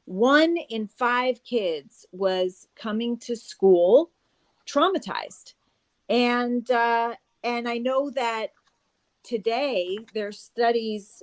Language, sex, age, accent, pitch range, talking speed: English, female, 40-59, American, 185-235 Hz, 95 wpm